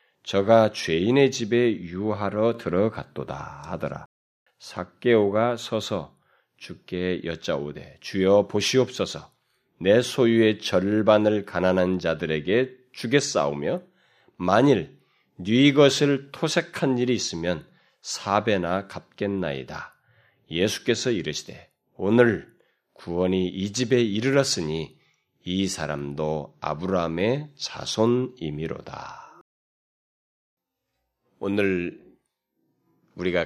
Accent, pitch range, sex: native, 90-125 Hz, male